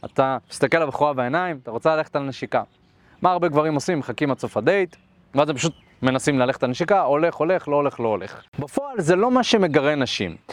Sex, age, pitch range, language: male, 30-49, 125-180 Hz, Hebrew